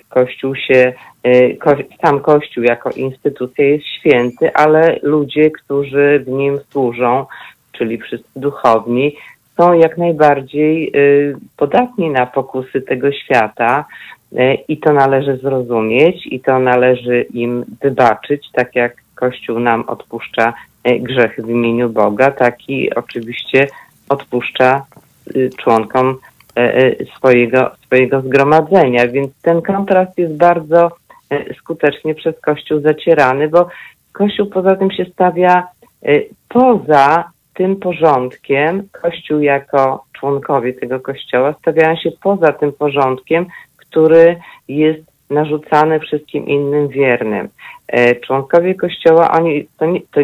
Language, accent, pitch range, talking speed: Polish, native, 130-160 Hz, 105 wpm